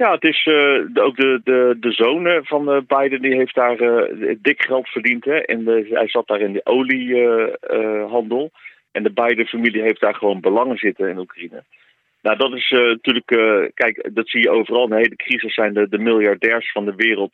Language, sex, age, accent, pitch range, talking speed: Dutch, male, 40-59, Dutch, 105-135 Hz, 210 wpm